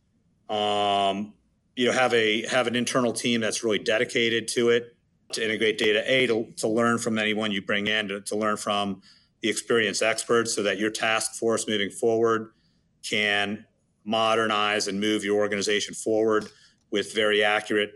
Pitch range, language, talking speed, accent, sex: 100-115 Hz, English, 165 wpm, American, male